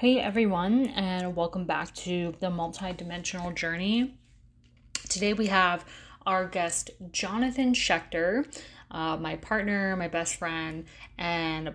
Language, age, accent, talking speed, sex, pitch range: English, 10-29, American, 115 wpm, female, 180-220 Hz